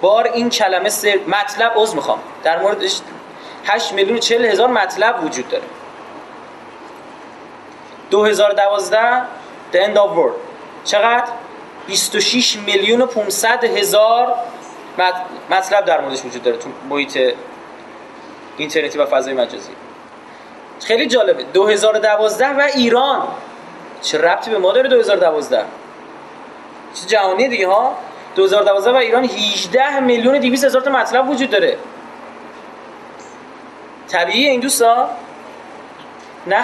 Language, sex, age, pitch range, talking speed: Persian, male, 30-49, 205-265 Hz, 110 wpm